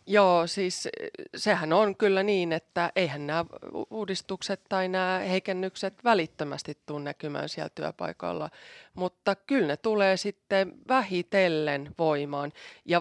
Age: 30-49